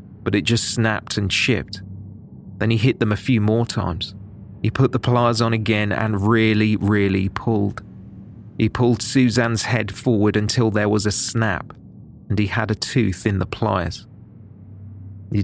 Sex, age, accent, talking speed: male, 30-49, British, 165 wpm